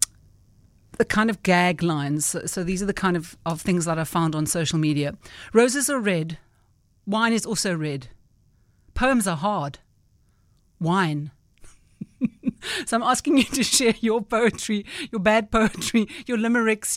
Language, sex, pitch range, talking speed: English, female, 165-210 Hz, 155 wpm